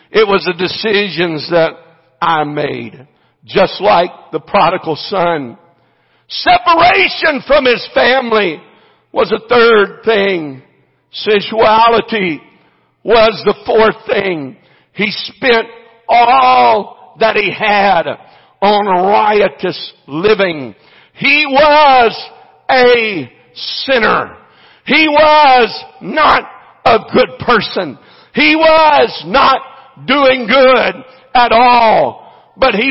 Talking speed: 95 wpm